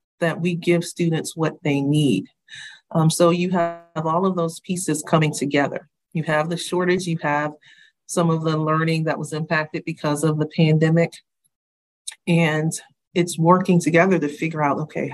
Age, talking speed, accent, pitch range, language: 40-59, 165 wpm, American, 160-190 Hz, English